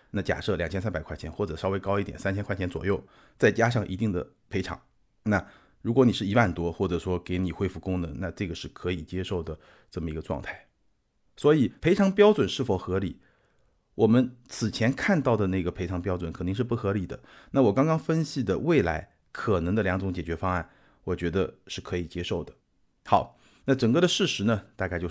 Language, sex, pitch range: Chinese, male, 90-120 Hz